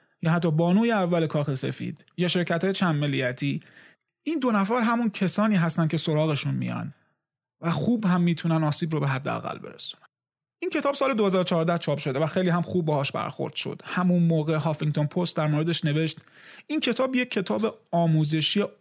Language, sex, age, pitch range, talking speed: Persian, male, 30-49, 160-210 Hz, 170 wpm